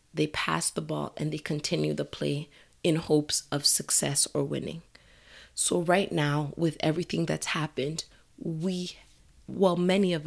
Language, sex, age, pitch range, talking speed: English, female, 20-39, 145-175 Hz, 150 wpm